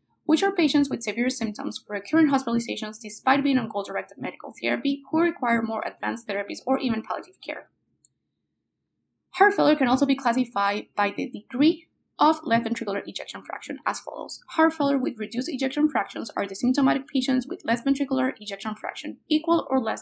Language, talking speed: English, 175 wpm